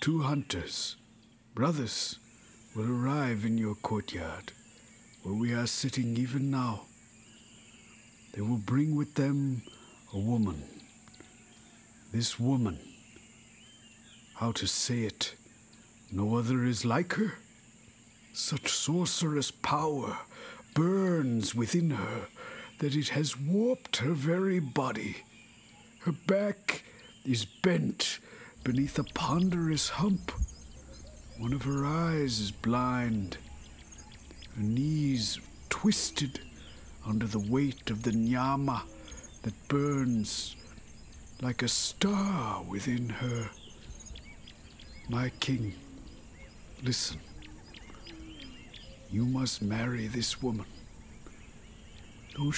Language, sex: English, male